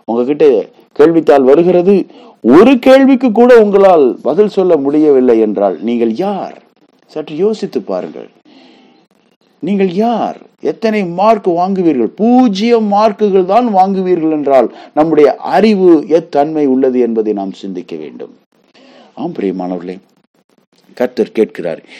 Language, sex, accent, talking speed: Tamil, male, native, 105 wpm